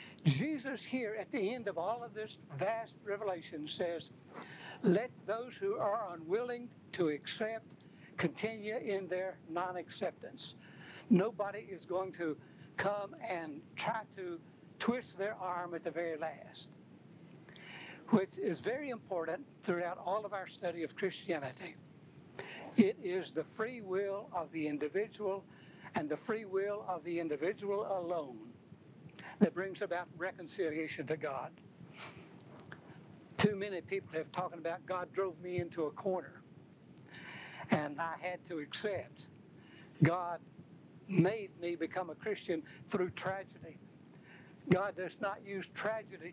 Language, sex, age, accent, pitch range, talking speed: English, male, 60-79, American, 165-205 Hz, 130 wpm